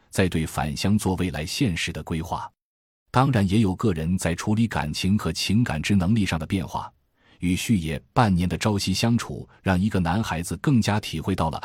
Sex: male